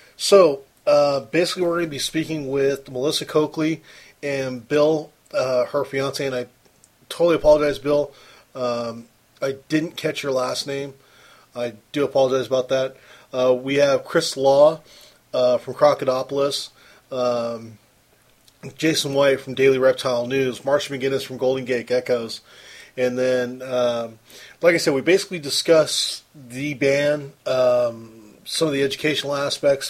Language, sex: English, male